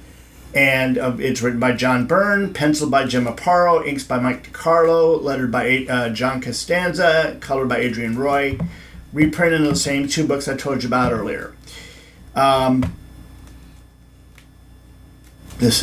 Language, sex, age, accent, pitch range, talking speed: English, male, 50-69, American, 120-155 Hz, 140 wpm